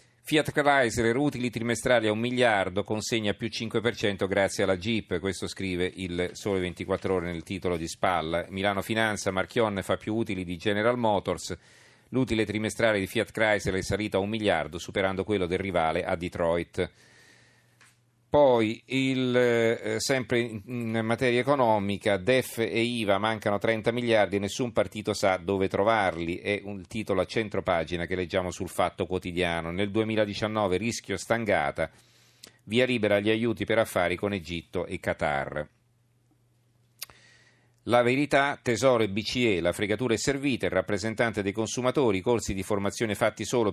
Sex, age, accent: male, 40-59, native